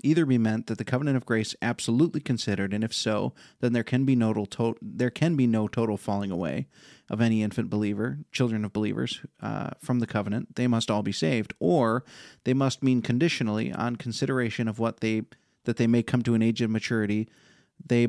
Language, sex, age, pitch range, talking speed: English, male, 30-49, 110-125 Hz, 190 wpm